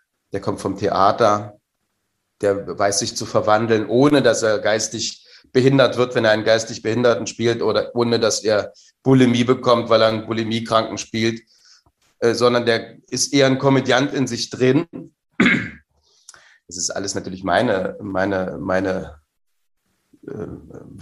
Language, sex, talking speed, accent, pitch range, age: German, male, 145 wpm, German, 110-130 Hz, 30-49